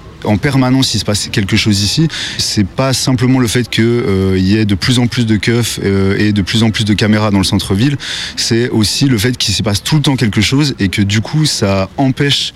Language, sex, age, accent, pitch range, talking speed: French, male, 30-49, French, 100-120 Hz, 250 wpm